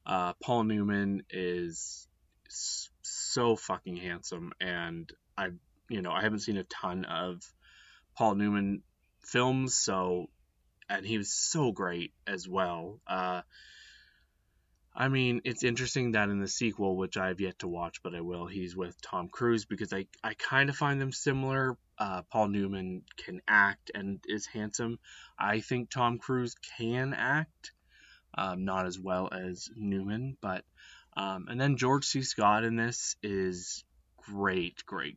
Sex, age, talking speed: male, 20-39, 150 wpm